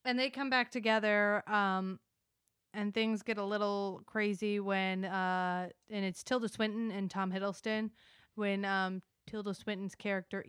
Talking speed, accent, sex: 150 wpm, American, female